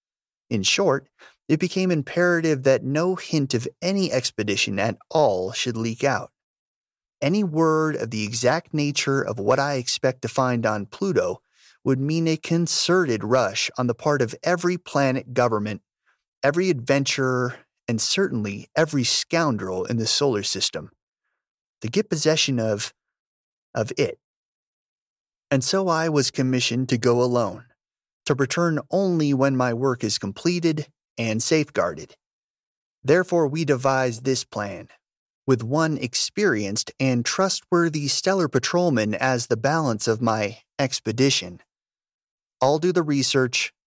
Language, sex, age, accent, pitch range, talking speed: English, male, 30-49, American, 115-160 Hz, 135 wpm